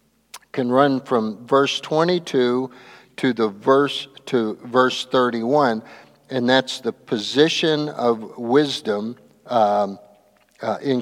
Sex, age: male, 50-69